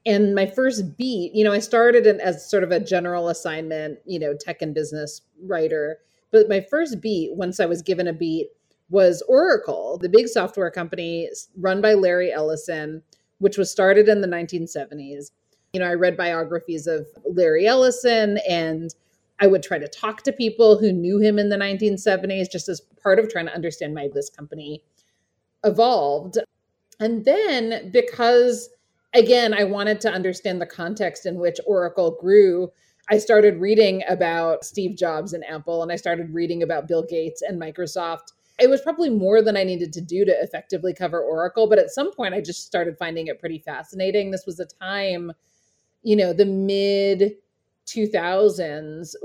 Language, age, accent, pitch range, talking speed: English, 30-49, American, 170-215 Hz, 175 wpm